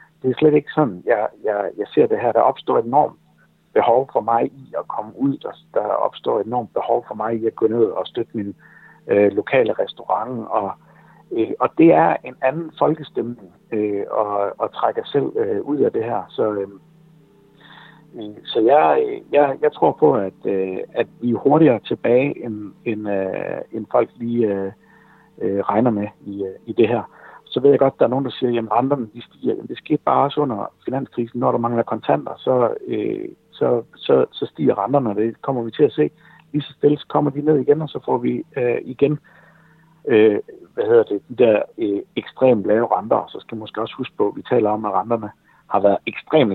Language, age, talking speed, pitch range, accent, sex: Danish, 60-79, 215 wpm, 105-150 Hz, native, male